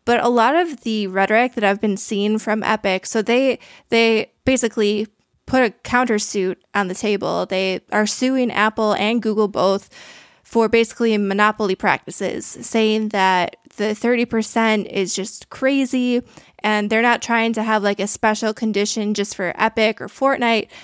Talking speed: 160 wpm